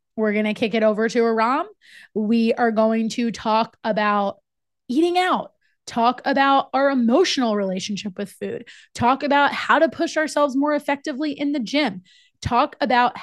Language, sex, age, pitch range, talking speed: English, female, 20-39, 195-250 Hz, 165 wpm